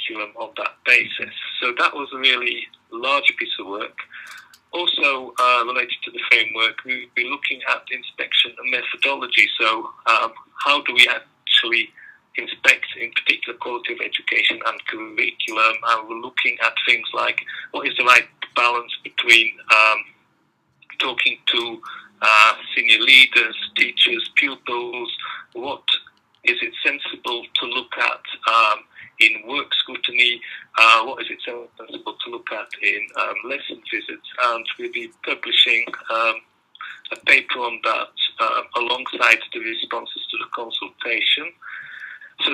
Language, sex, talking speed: English, male, 140 wpm